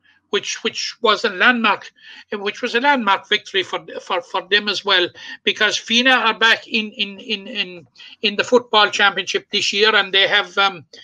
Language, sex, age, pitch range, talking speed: English, male, 60-79, 200-245 Hz, 185 wpm